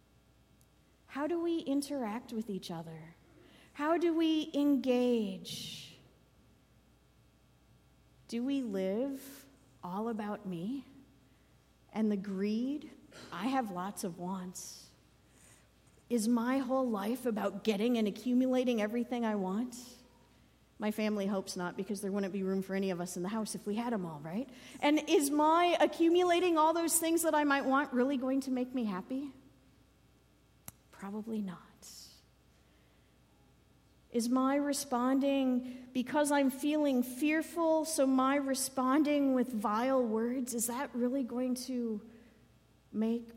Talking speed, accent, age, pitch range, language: 135 wpm, American, 40-59, 215-285 Hz, English